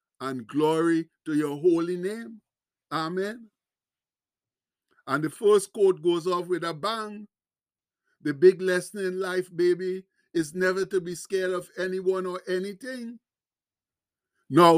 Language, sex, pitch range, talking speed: English, male, 170-200 Hz, 130 wpm